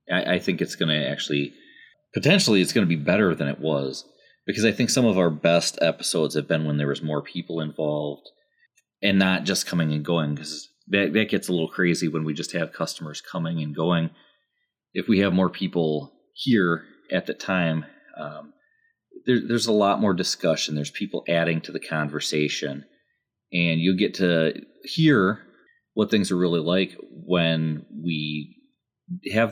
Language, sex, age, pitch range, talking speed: English, male, 30-49, 75-100 Hz, 175 wpm